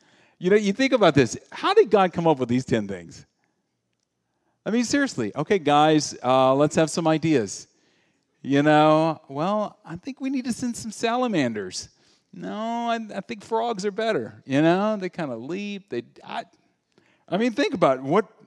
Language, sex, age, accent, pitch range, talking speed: English, male, 40-59, American, 115-165 Hz, 180 wpm